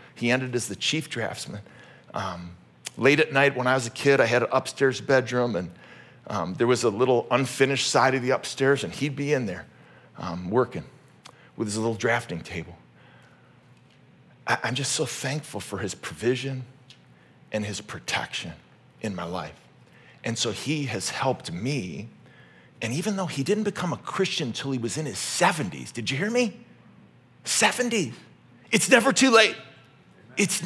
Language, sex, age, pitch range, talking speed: English, male, 40-59, 115-160 Hz, 170 wpm